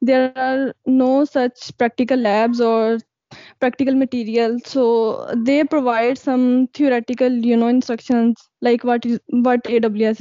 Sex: female